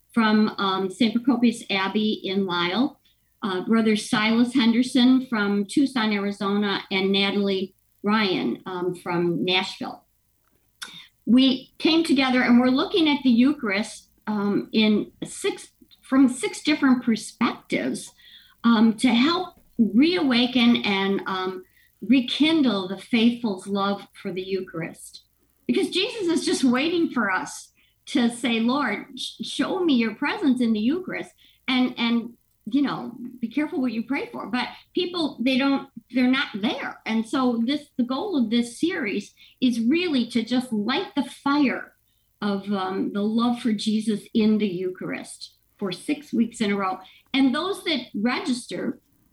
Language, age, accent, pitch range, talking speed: English, 50-69, American, 205-265 Hz, 140 wpm